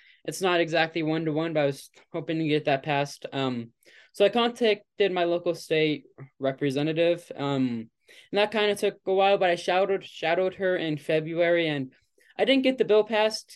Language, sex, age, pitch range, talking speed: English, male, 10-29, 150-195 Hz, 195 wpm